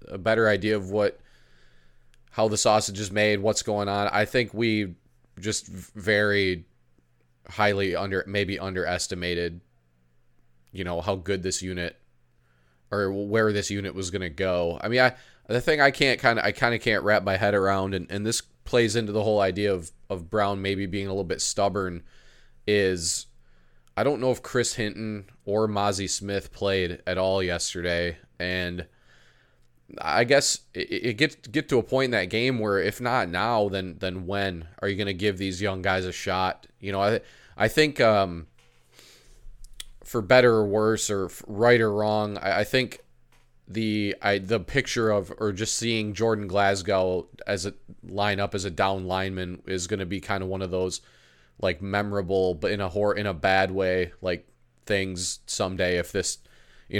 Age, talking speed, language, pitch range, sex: 20-39, 180 wpm, English, 90-105 Hz, male